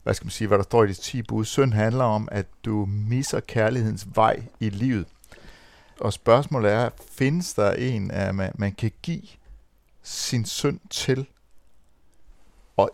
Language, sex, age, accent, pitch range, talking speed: Danish, male, 60-79, native, 95-130 Hz, 160 wpm